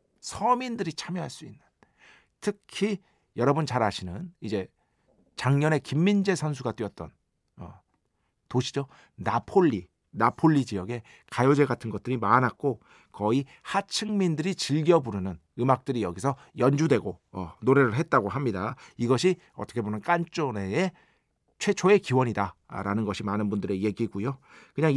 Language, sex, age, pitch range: Korean, male, 40-59, 115-175 Hz